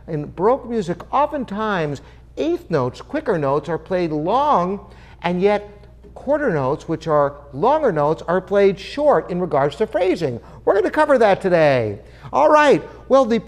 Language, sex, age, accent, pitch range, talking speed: English, male, 50-69, American, 145-235 Hz, 155 wpm